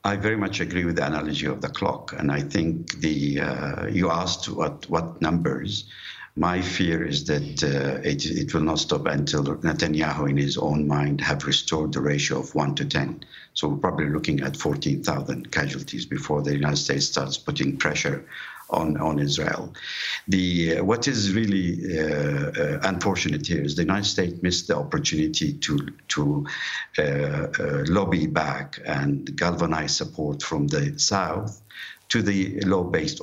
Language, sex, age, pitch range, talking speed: English, male, 60-79, 75-90 Hz, 165 wpm